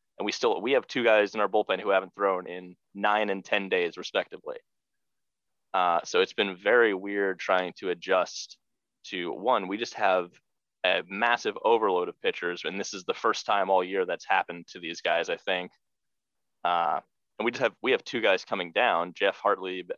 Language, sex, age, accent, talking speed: English, male, 20-39, American, 200 wpm